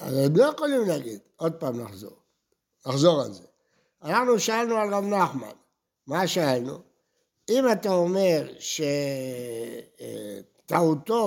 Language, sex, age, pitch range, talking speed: Hebrew, male, 60-79, 165-230 Hz, 115 wpm